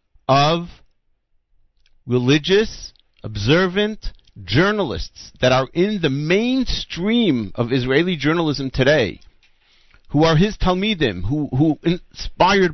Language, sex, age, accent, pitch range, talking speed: English, male, 50-69, American, 120-160 Hz, 95 wpm